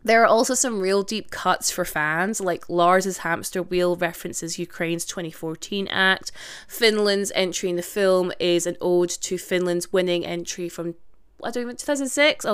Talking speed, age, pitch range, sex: 170 wpm, 20-39, 175-255 Hz, female